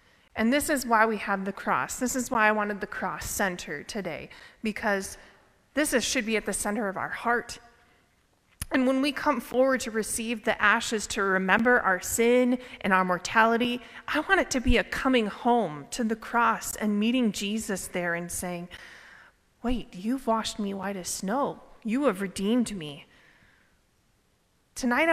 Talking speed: 175 wpm